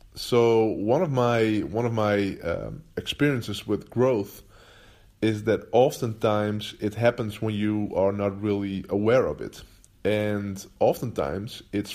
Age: 20-39